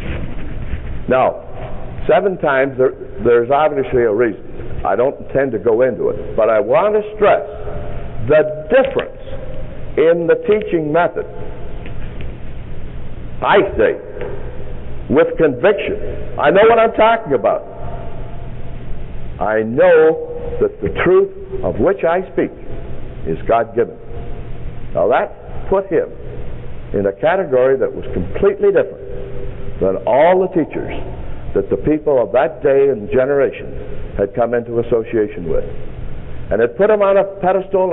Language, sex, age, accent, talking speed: English, male, 60-79, American, 130 wpm